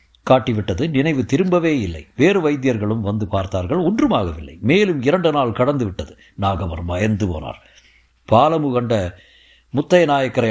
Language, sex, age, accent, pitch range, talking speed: Tamil, male, 60-79, native, 100-140 Hz, 120 wpm